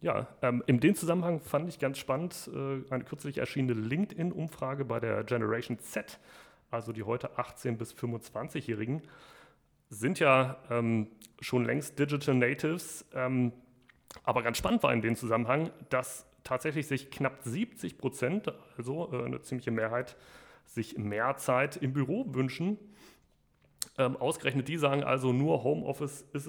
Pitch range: 125-150 Hz